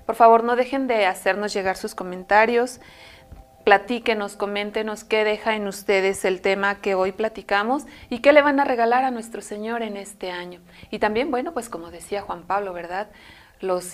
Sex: female